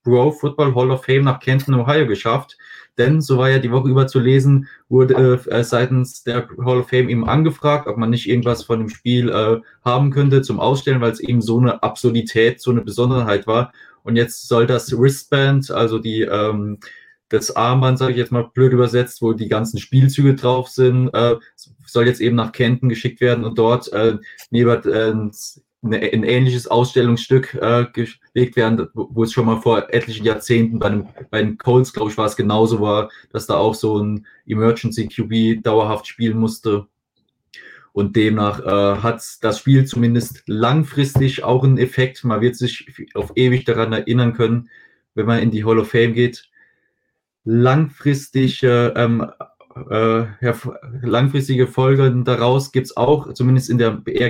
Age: 20-39